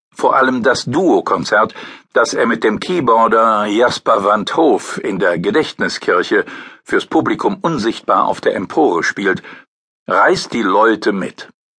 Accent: German